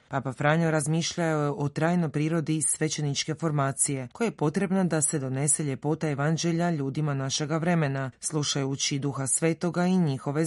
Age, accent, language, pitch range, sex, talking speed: 30-49, native, Croatian, 140-170 Hz, female, 145 wpm